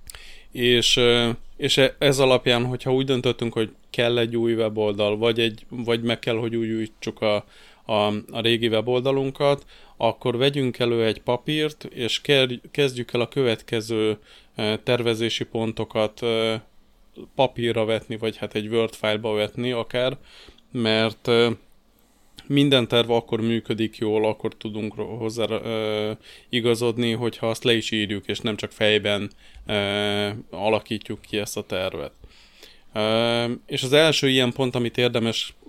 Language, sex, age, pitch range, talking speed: Hungarian, male, 20-39, 110-125 Hz, 130 wpm